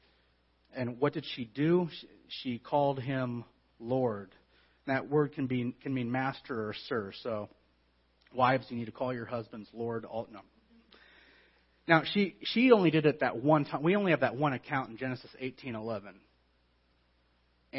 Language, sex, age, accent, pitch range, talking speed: English, male, 30-49, American, 115-150 Hz, 160 wpm